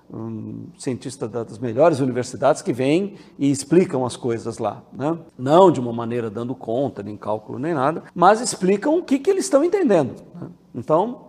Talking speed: 175 wpm